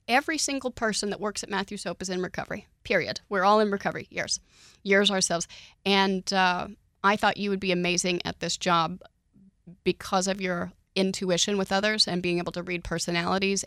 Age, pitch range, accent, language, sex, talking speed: 30-49, 170-195 Hz, American, English, female, 185 wpm